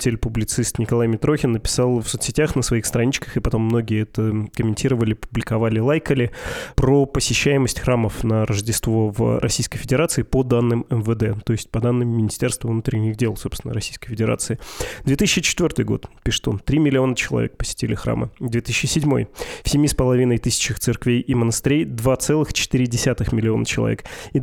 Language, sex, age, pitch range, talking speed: Russian, male, 20-39, 115-135 Hz, 140 wpm